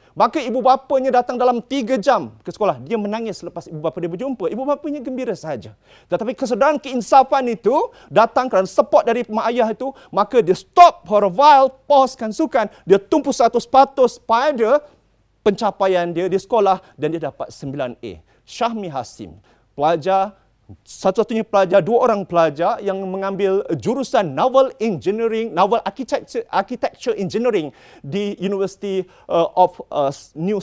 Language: Malay